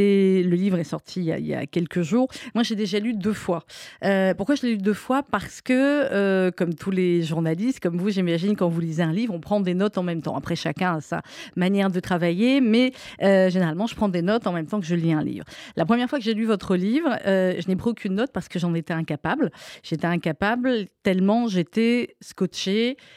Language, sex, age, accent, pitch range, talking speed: French, female, 30-49, French, 180-230 Hz, 245 wpm